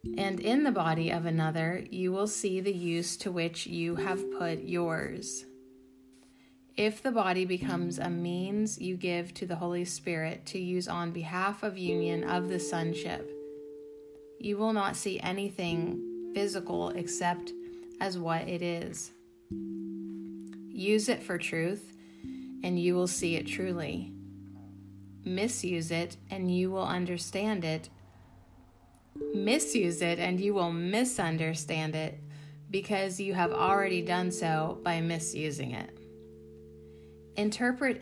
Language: English